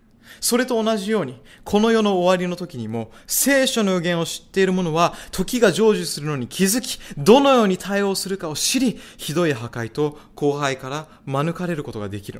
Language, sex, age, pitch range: Japanese, male, 20-39, 130-195 Hz